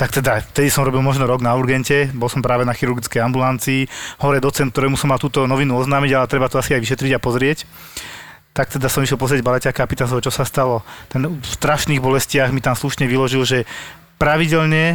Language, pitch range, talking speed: Slovak, 130-150 Hz, 210 wpm